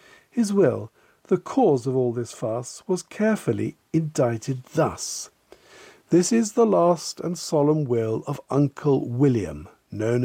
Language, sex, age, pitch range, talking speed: English, male, 50-69, 120-170 Hz, 135 wpm